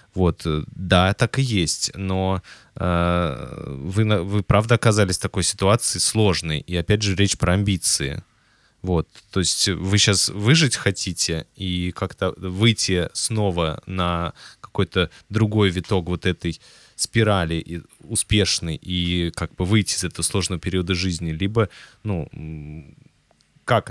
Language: Russian